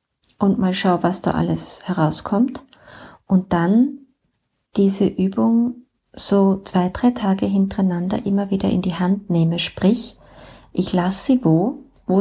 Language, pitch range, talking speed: German, 180-230 Hz, 140 wpm